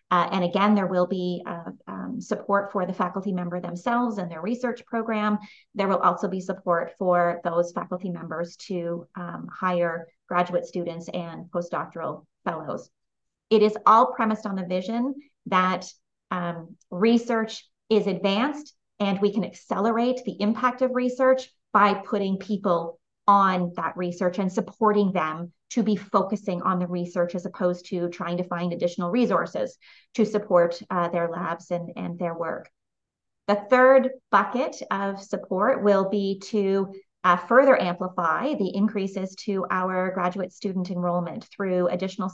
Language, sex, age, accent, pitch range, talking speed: English, female, 30-49, American, 180-210 Hz, 150 wpm